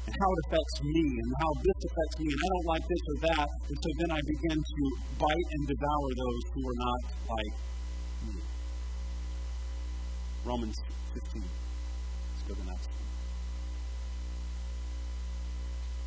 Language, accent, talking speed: English, American, 150 wpm